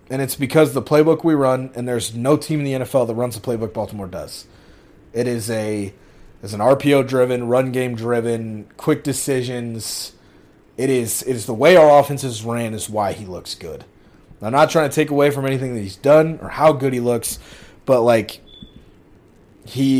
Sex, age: male, 30-49